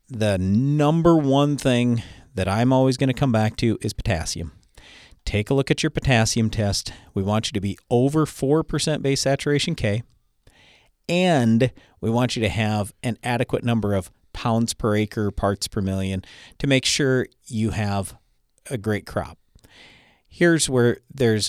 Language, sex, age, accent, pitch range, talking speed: English, male, 50-69, American, 100-130 Hz, 160 wpm